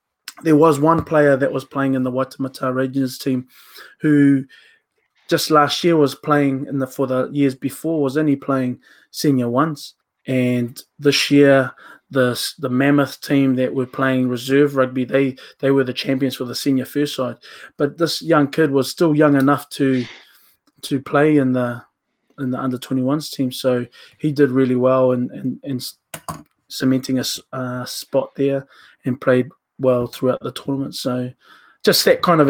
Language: English